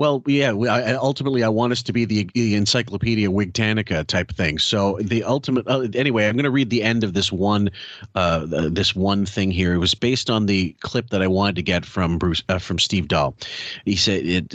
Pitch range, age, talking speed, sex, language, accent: 90-110 Hz, 40-59, 230 wpm, male, English, American